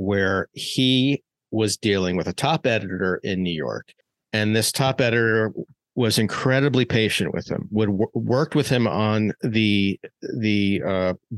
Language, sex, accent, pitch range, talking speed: English, male, American, 95-120 Hz, 150 wpm